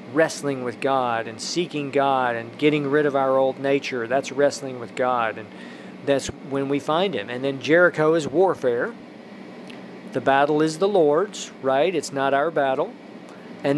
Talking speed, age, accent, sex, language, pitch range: 170 wpm, 40-59, American, male, English, 135-165 Hz